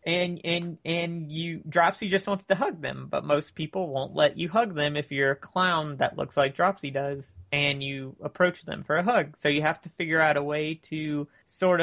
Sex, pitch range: male, 145-180 Hz